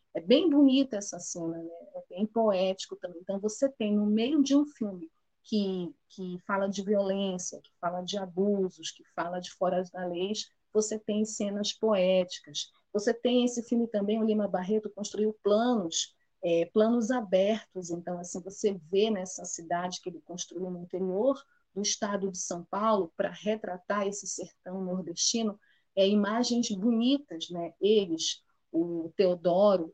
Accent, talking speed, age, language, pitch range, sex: Brazilian, 155 wpm, 30-49, Portuguese, 175-215 Hz, female